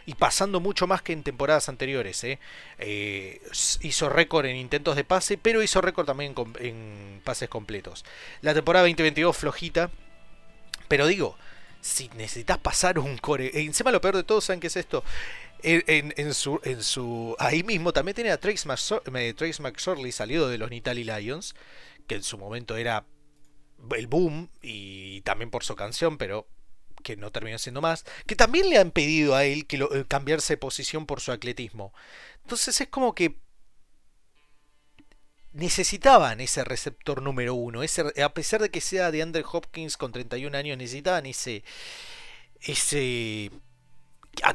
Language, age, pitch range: Spanish, 30-49, 125-170 Hz